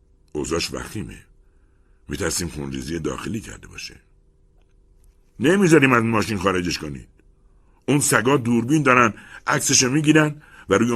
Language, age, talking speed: Persian, 60-79, 110 wpm